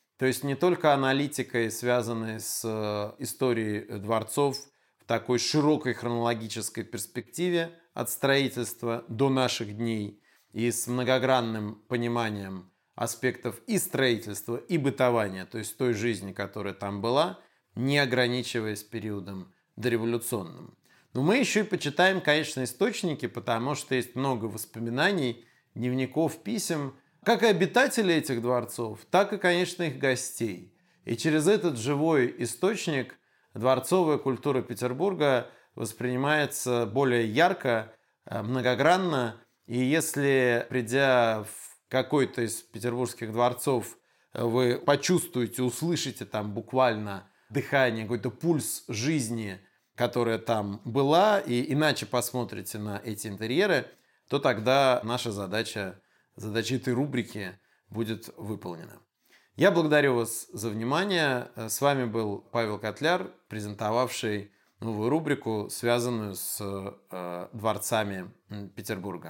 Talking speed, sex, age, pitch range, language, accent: 110 wpm, male, 30-49, 110-140 Hz, Russian, native